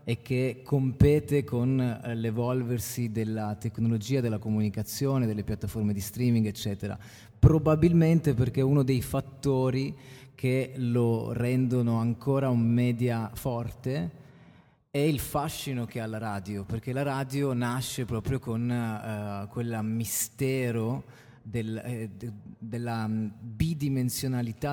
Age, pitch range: 30-49, 115-130 Hz